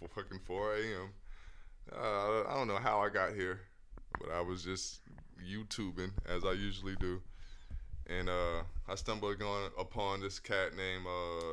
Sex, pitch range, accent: male, 85-105 Hz, American